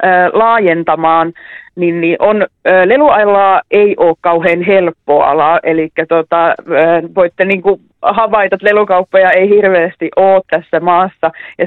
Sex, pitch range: female, 165-195 Hz